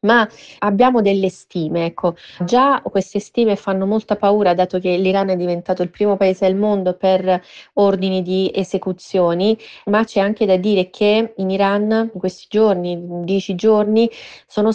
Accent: native